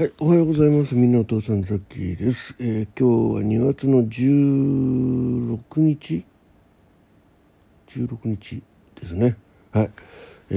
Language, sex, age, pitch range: Japanese, male, 60-79, 95-125 Hz